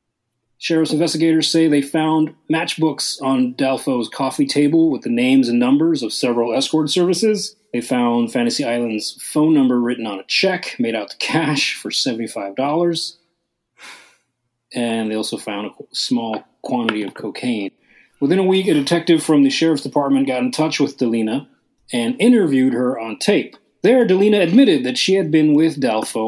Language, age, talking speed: English, 30-49, 165 wpm